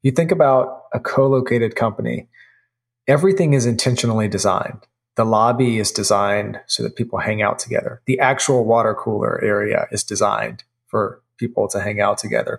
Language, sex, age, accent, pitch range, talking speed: English, male, 30-49, American, 115-140 Hz, 155 wpm